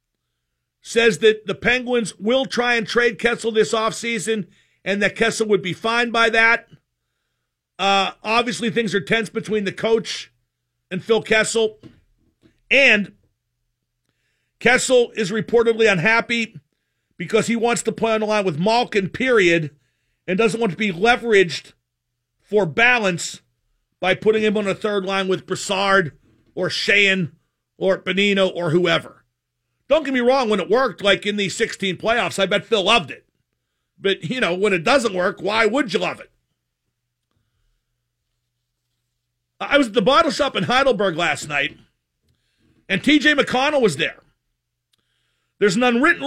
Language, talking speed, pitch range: English, 150 wpm, 170-230 Hz